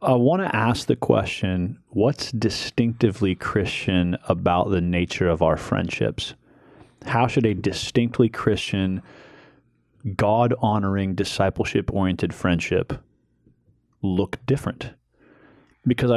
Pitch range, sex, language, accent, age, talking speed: 95-115 Hz, male, English, American, 30-49, 95 wpm